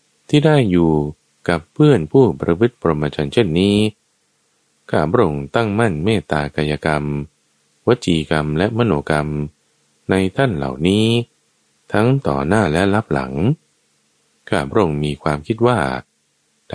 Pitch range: 75-105 Hz